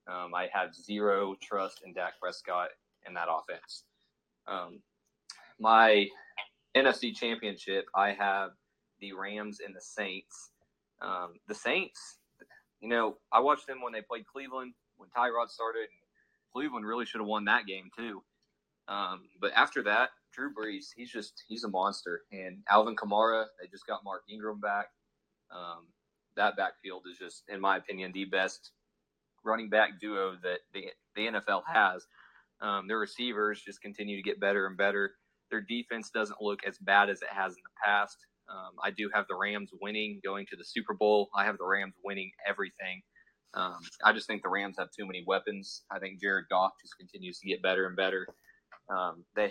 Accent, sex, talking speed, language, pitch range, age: American, male, 180 wpm, English, 95-110 Hz, 20-39